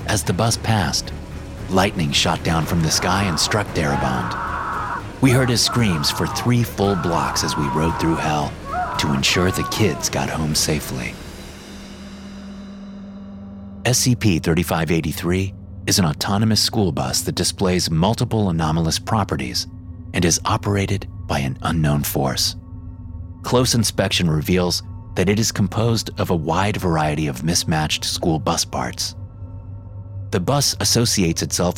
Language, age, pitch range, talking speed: English, 30-49, 85-105 Hz, 135 wpm